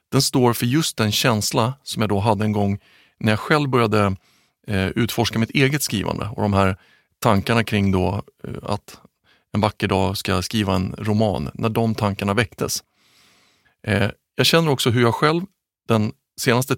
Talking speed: 165 wpm